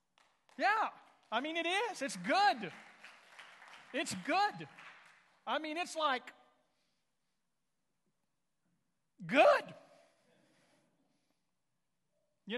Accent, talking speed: American, 70 wpm